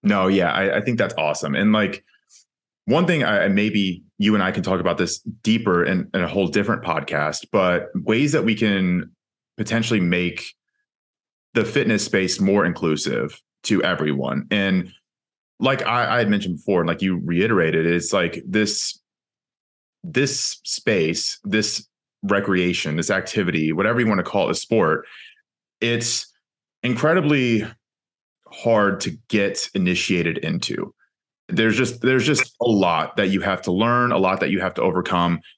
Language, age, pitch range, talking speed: English, 30-49, 90-115 Hz, 160 wpm